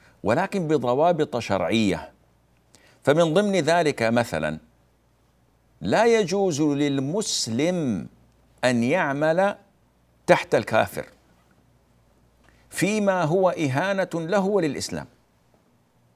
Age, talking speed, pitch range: 60-79, 70 wpm, 95-145 Hz